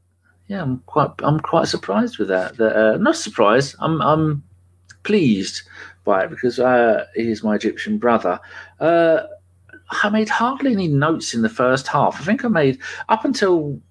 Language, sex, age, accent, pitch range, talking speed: English, male, 40-59, British, 125-185 Hz, 175 wpm